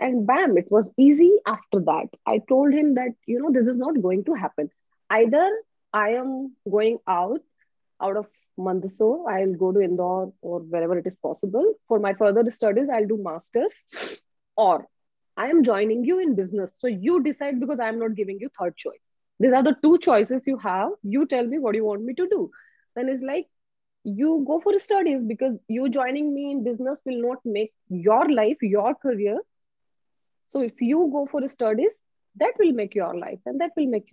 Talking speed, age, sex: 200 wpm, 20-39, female